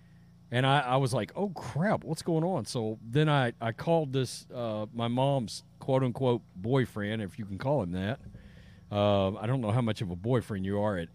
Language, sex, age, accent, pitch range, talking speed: English, male, 40-59, American, 115-160 Hz, 210 wpm